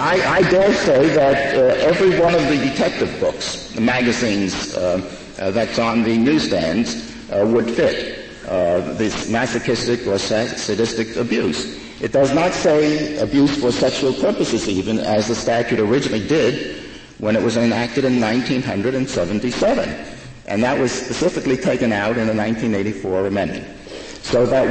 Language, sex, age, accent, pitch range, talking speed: English, male, 60-79, American, 110-140 Hz, 150 wpm